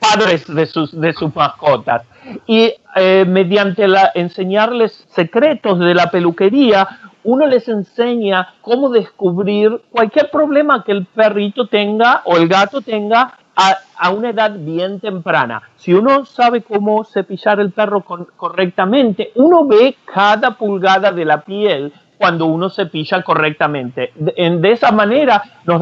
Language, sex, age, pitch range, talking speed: Spanish, male, 50-69, 160-210 Hz, 145 wpm